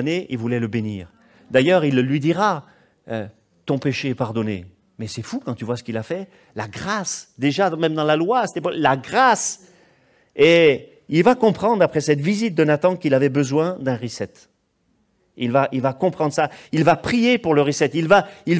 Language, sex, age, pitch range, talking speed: French, male, 40-59, 140-215 Hz, 205 wpm